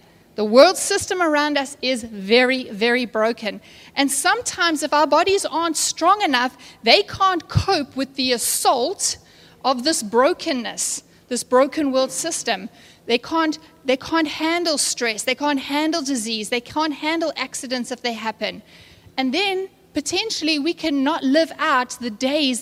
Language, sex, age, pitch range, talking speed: English, female, 30-49, 250-310 Hz, 150 wpm